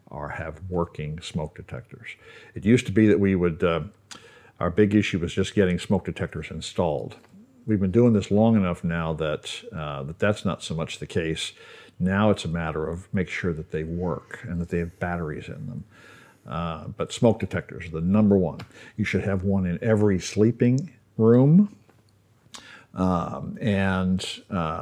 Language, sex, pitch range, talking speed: English, male, 90-110 Hz, 180 wpm